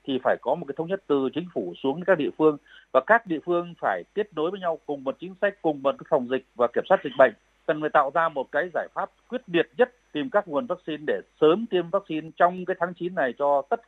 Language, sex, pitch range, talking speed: Vietnamese, male, 135-175 Hz, 270 wpm